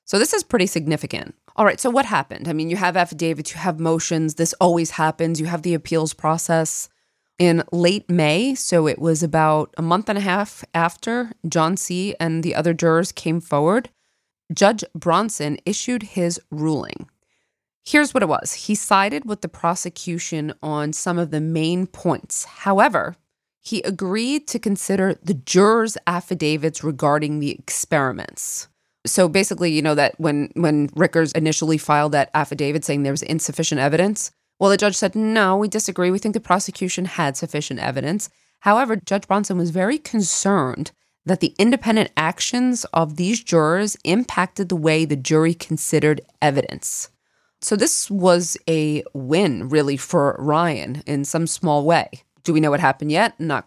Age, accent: 20-39, American